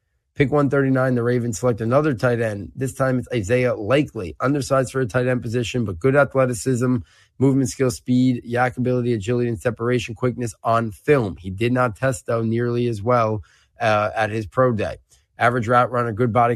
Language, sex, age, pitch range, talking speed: English, male, 30-49, 110-130 Hz, 185 wpm